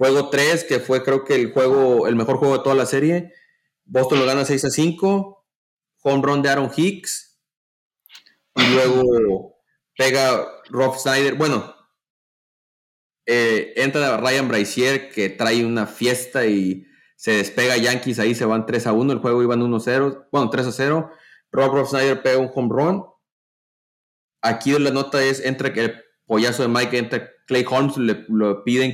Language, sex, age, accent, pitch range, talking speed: Spanish, male, 30-49, Mexican, 115-135 Hz, 170 wpm